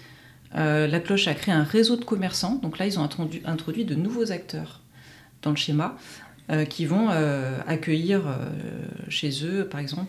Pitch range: 155-195 Hz